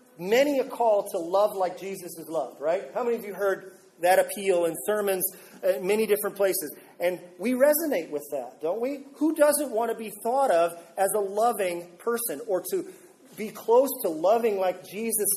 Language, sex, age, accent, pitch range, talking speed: English, male, 40-59, American, 190-255 Hz, 190 wpm